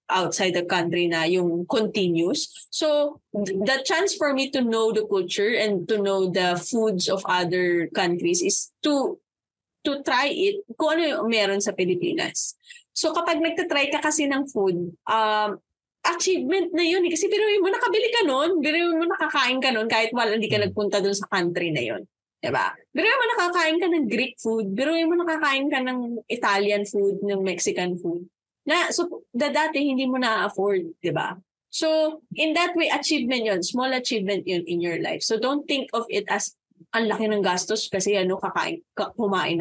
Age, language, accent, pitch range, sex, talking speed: 20-39, Filipino, native, 200-315 Hz, female, 180 wpm